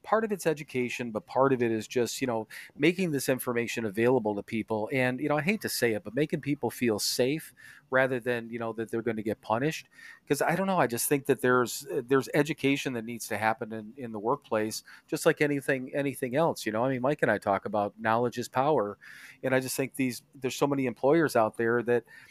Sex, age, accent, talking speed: male, 40-59, American, 240 wpm